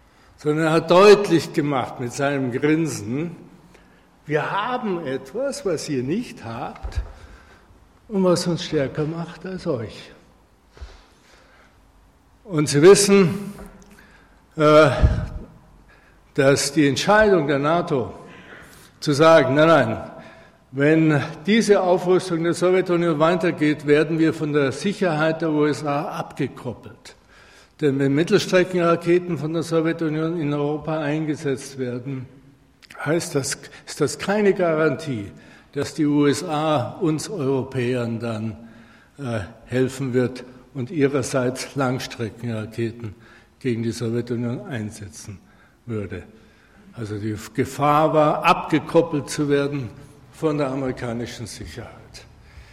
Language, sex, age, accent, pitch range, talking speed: German, male, 60-79, German, 125-170 Hz, 105 wpm